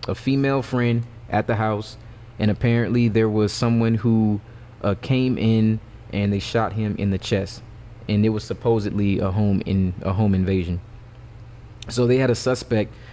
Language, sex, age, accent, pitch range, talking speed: English, male, 20-39, American, 105-115 Hz, 170 wpm